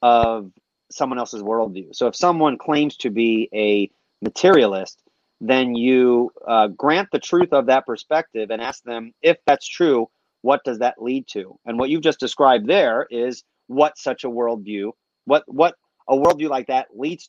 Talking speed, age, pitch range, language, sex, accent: 175 wpm, 30-49, 120-155 Hz, English, male, American